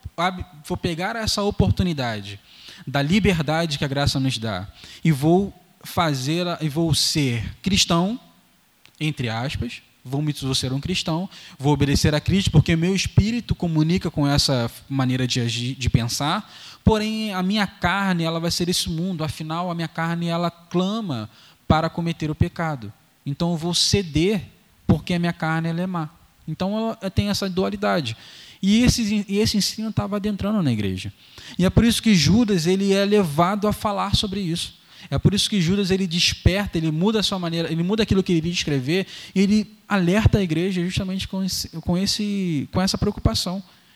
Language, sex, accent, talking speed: Portuguese, male, Brazilian, 175 wpm